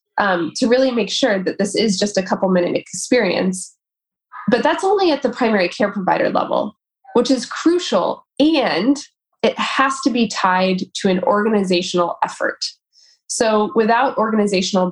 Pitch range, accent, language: 180-235 Hz, American, English